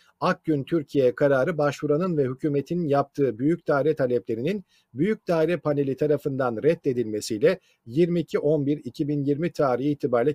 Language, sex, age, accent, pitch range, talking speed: Turkish, male, 50-69, native, 130-180 Hz, 110 wpm